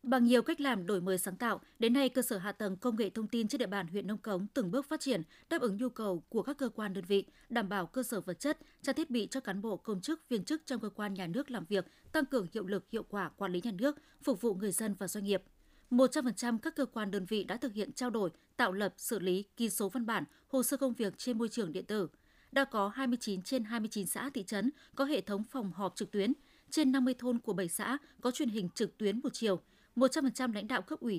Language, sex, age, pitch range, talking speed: Vietnamese, female, 20-39, 200-260 Hz, 265 wpm